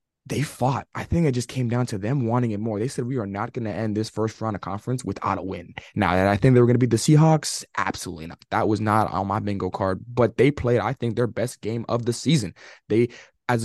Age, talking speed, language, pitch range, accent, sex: 20-39, 275 wpm, English, 105-120 Hz, American, male